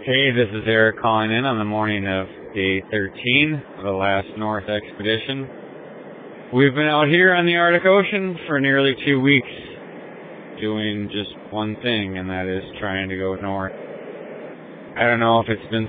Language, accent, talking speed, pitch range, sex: English, American, 175 wpm, 100-115 Hz, male